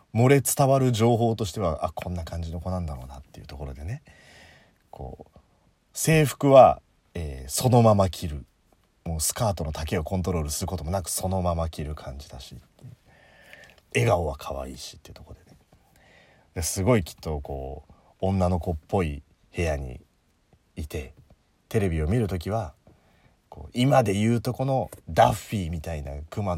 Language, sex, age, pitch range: Japanese, male, 40-59, 80-120 Hz